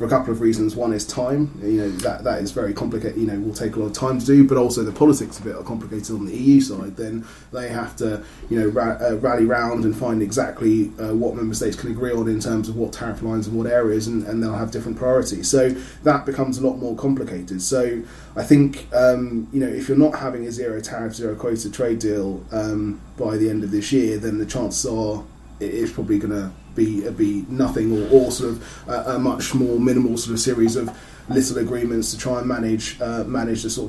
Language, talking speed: English, 245 wpm